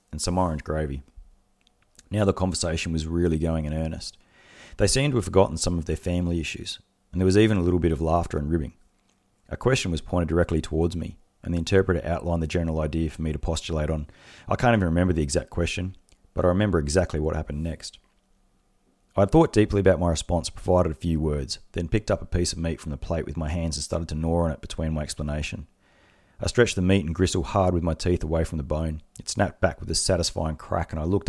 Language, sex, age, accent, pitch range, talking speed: English, male, 30-49, Australian, 80-95 Hz, 235 wpm